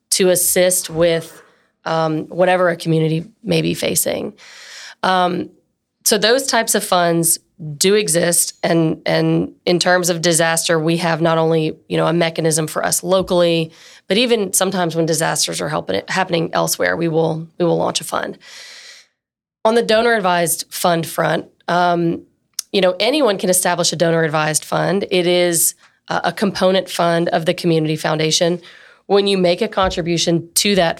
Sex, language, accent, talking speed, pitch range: female, English, American, 165 wpm, 165-185 Hz